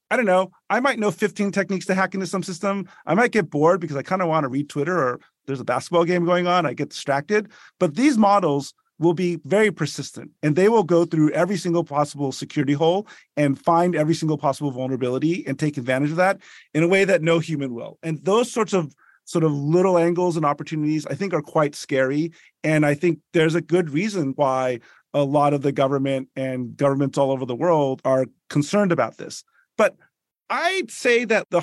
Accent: American